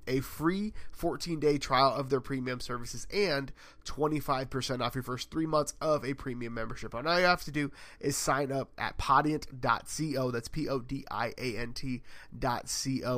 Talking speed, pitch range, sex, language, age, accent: 150 wpm, 125-150 Hz, male, English, 30-49, American